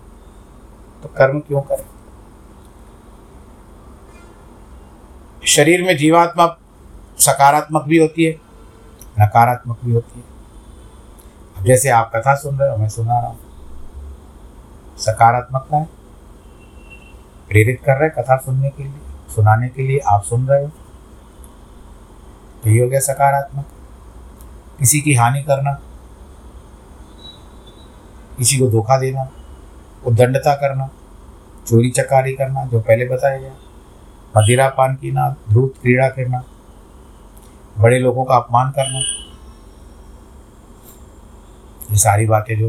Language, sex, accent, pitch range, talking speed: Hindi, male, native, 95-130 Hz, 105 wpm